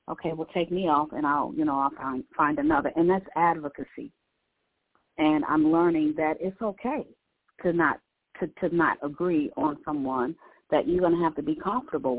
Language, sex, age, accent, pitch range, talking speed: English, female, 40-59, American, 150-190 Hz, 185 wpm